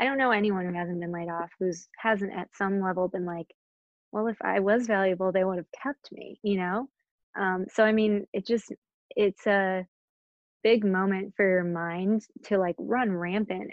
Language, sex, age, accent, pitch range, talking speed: English, female, 20-39, American, 180-210 Hz, 195 wpm